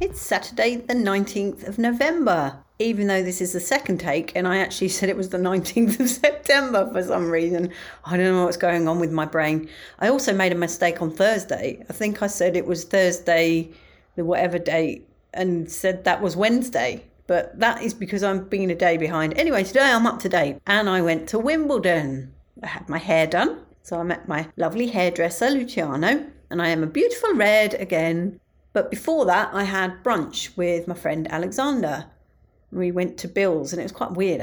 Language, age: English, 40-59